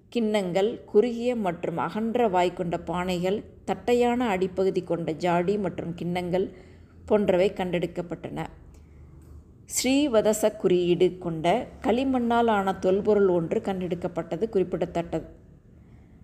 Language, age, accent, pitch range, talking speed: Tamil, 20-39, native, 175-220 Hz, 85 wpm